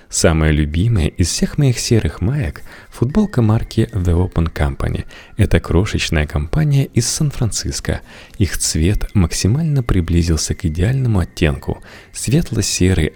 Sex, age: male, 30-49